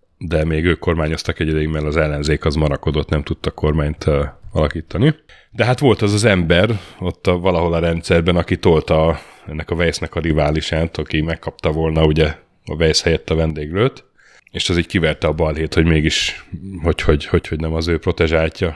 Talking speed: 190 wpm